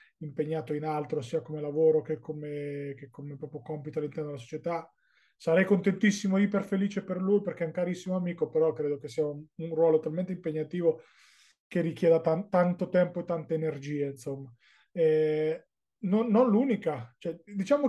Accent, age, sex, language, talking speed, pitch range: native, 20-39, male, Italian, 170 wpm, 150-190 Hz